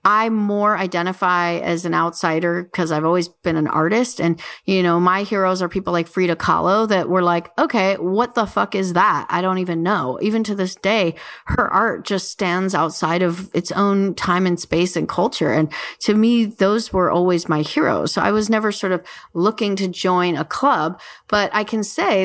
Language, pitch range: English, 175-215 Hz